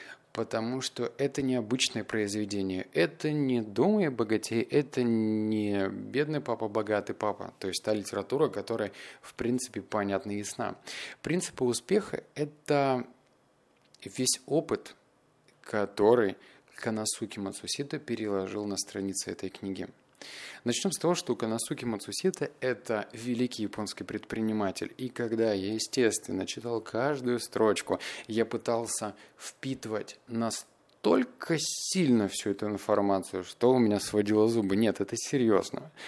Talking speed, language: 120 wpm, Russian